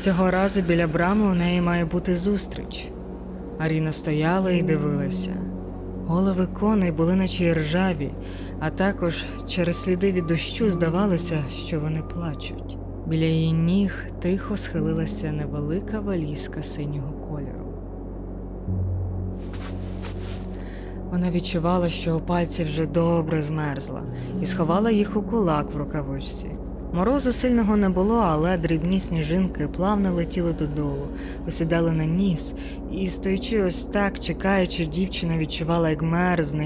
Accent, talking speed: native, 120 wpm